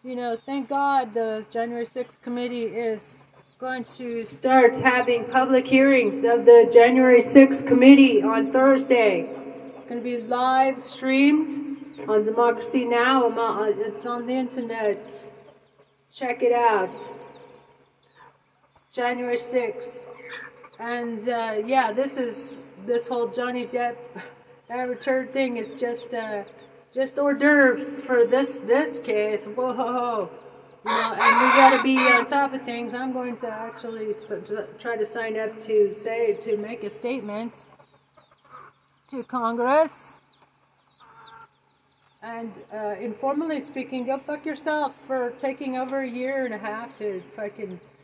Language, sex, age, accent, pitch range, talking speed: English, female, 40-59, American, 225-260 Hz, 130 wpm